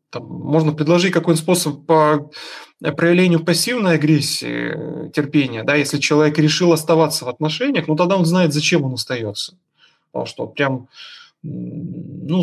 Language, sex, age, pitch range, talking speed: Russian, male, 20-39, 145-170 Hz, 130 wpm